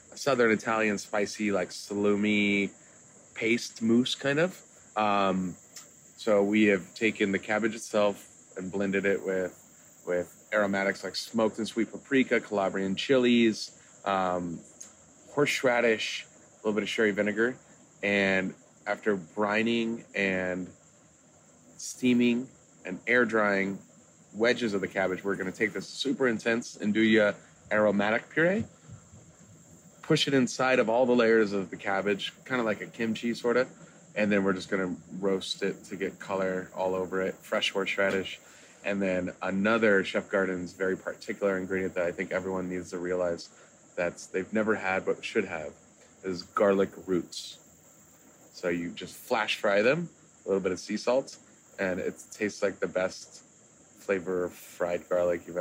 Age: 30-49